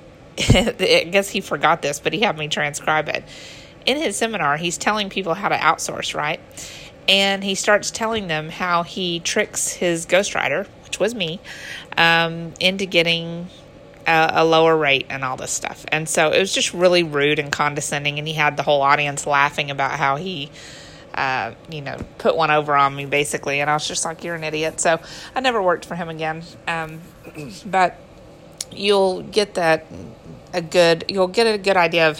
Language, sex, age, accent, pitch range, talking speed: English, female, 30-49, American, 150-185 Hz, 190 wpm